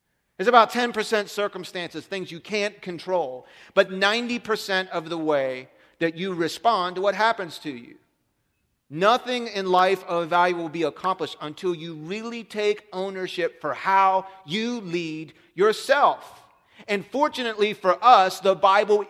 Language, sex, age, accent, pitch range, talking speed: English, male, 40-59, American, 170-205 Hz, 140 wpm